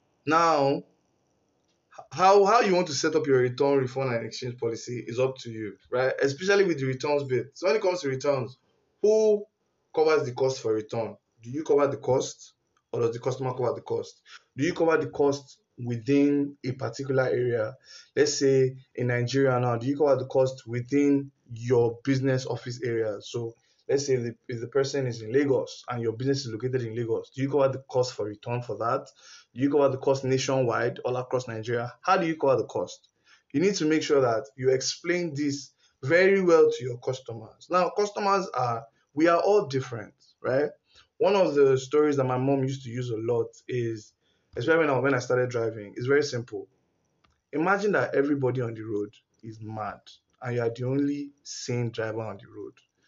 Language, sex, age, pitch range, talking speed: English, male, 20-39, 120-150 Hz, 195 wpm